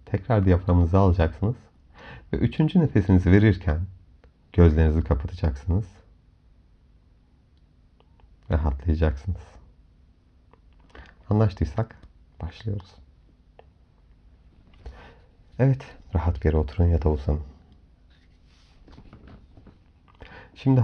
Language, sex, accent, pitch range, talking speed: Turkish, male, native, 75-90 Hz, 60 wpm